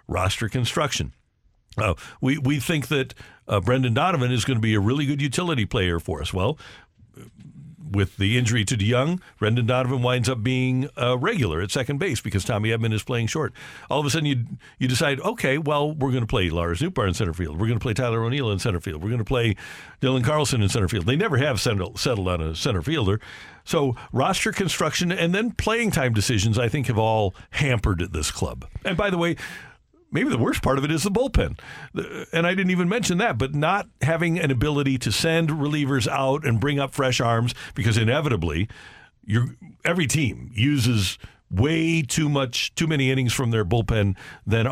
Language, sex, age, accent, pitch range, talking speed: English, male, 60-79, American, 110-145 Hz, 205 wpm